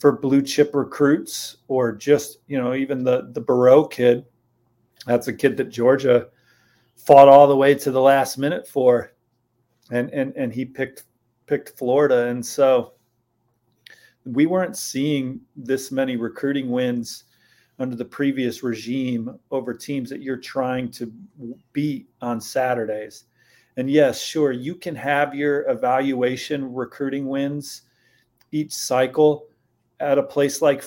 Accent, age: American, 40-59